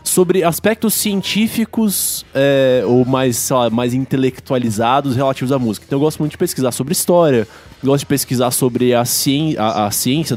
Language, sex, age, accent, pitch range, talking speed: Portuguese, male, 20-39, Brazilian, 130-175 Hz, 155 wpm